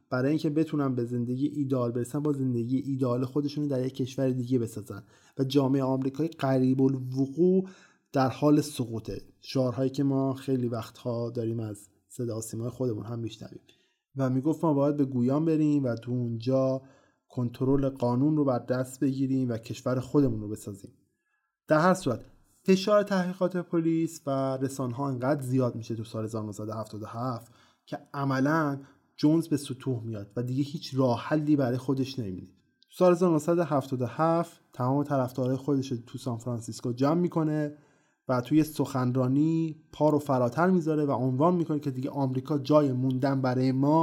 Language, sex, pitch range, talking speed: Persian, male, 120-150 Hz, 150 wpm